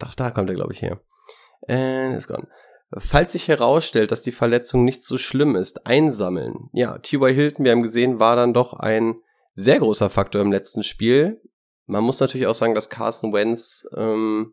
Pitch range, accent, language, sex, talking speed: 105-130 Hz, German, German, male, 190 wpm